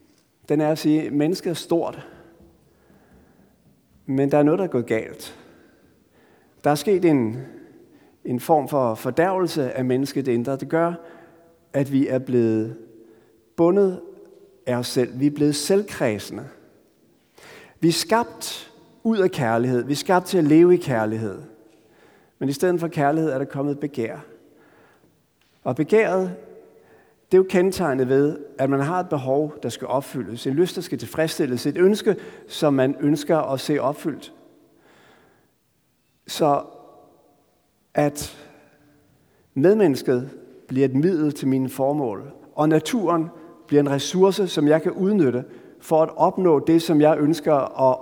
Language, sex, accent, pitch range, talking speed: Danish, male, native, 135-180 Hz, 150 wpm